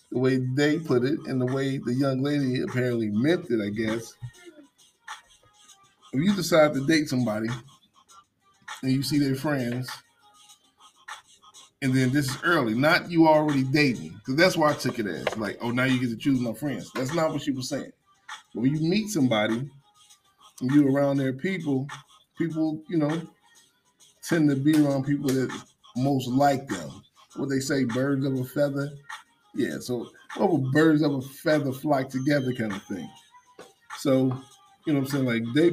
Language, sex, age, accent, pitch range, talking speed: English, male, 20-39, American, 130-170 Hz, 180 wpm